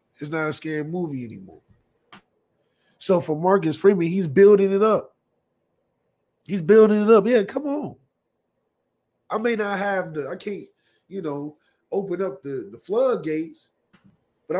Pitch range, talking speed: 140-195 Hz, 150 wpm